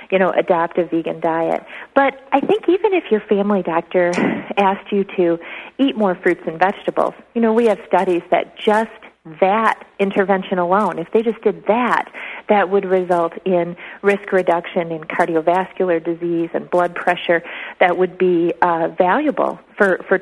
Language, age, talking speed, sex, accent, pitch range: English, 40-59, 165 wpm, female, American, 175-205 Hz